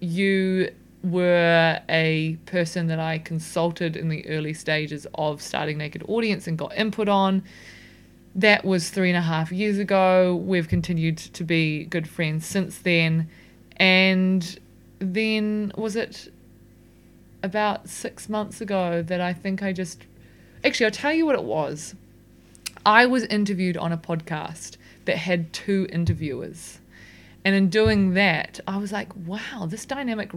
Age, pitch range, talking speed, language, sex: 20-39, 155-190 Hz, 150 wpm, English, female